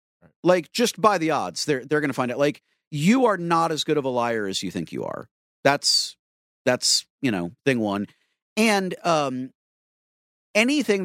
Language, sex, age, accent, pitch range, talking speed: English, male, 50-69, American, 100-155 Hz, 185 wpm